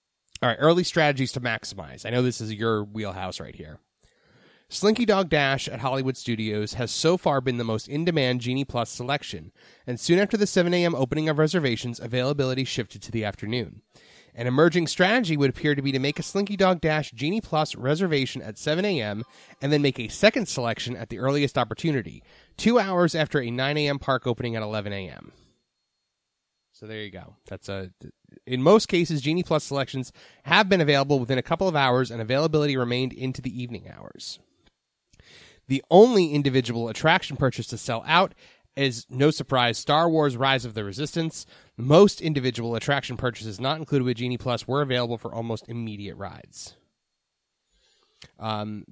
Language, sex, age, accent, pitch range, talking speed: English, male, 30-49, American, 120-155 Hz, 175 wpm